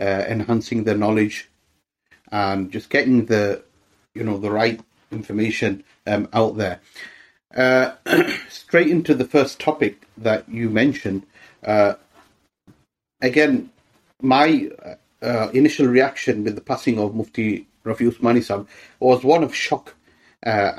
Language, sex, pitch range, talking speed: English, male, 105-135 Hz, 125 wpm